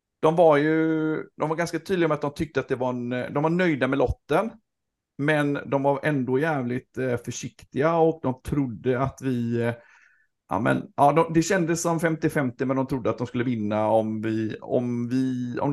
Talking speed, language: 190 wpm, Swedish